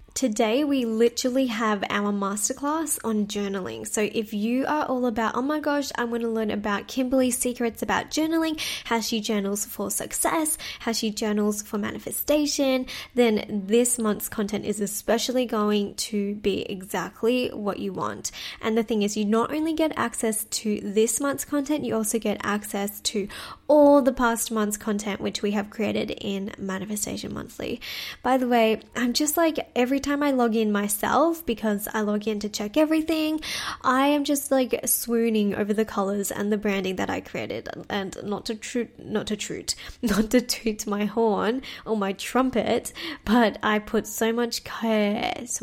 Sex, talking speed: female, 175 wpm